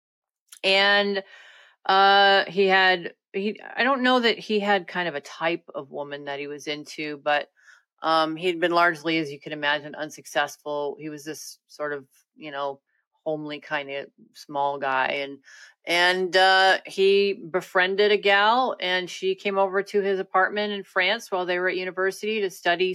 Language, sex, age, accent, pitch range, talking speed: English, female, 30-49, American, 175-205 Hz, 175 wpm